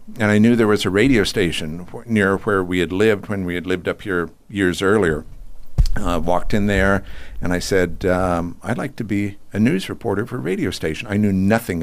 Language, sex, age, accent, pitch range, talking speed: English, male, 60-79, American, 90-110 Hz, 220 wpm